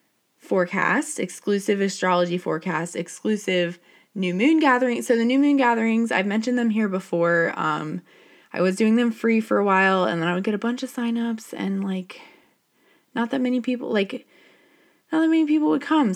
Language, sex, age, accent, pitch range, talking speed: English, female, 20-39, American, 175-240 Hz, 180 wpm